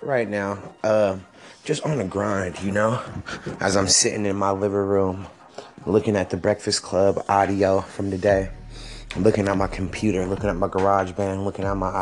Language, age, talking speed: English, 20-39, 185 wpm